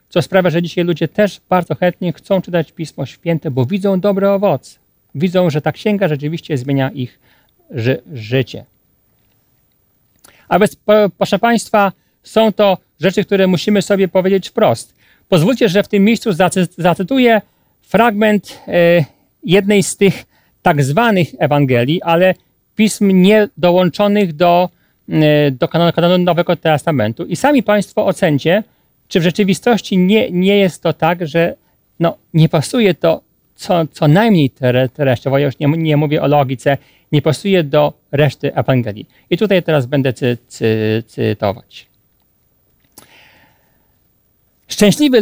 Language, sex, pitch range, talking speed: Polish, male, 145-195 Hz, 135 wpm